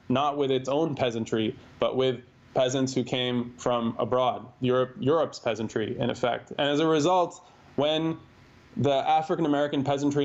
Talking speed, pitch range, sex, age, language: 150 wpm, 120-145 Hz, male, 20-39, English